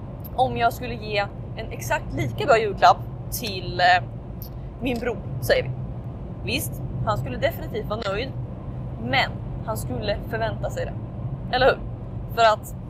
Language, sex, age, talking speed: Swedish, female, 20-39, 140 wpm